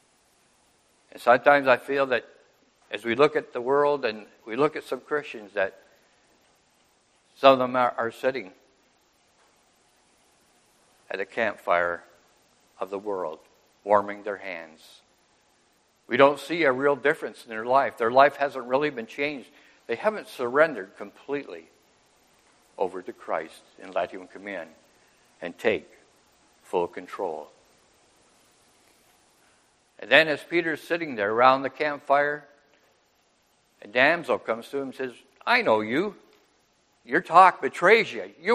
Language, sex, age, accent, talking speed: English, male, 60-79, American, 135 wpm